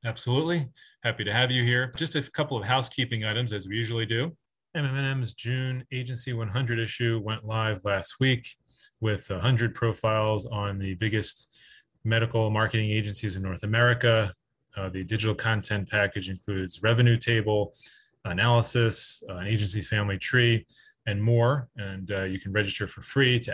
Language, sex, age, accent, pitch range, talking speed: English, male, 30-49, American, 105-125 Hz, 155 wpm